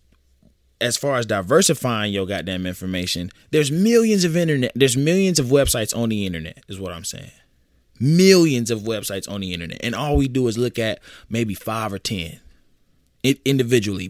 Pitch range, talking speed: 90-130 Hz, 170 wpm